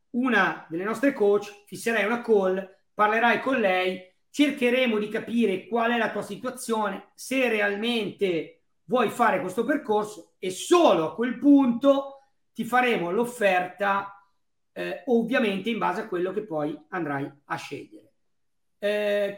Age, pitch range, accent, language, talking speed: 40-59, 185-240 Hz, native, Italian, 135 wpm